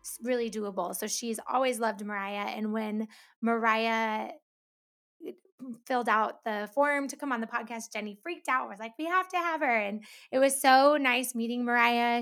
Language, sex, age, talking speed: English, female, 20-39, 180 wpm